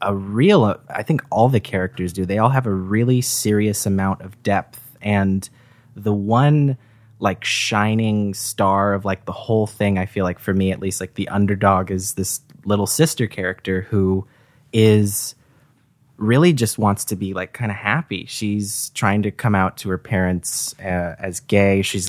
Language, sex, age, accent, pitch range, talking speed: English, male, 20-39, American, 100-125 Hz, 180 wpm